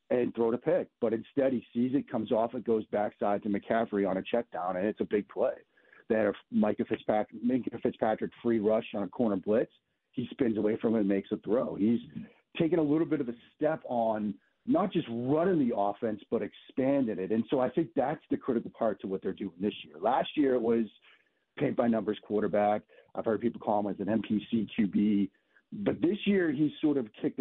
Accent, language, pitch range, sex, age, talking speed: American, English, 105-140 Hz, male, 40-59, 215 wpm